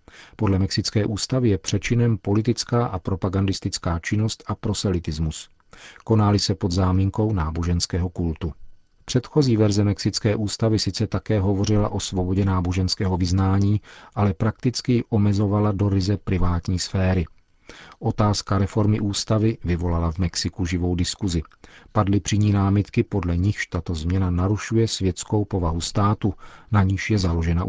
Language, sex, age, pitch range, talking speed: Czech, male, 40-59, 90-110 Hz, 130 wpm